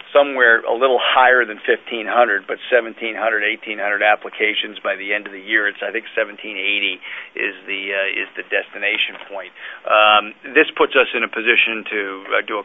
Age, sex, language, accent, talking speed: 40-59, male, English, American, 180 wpm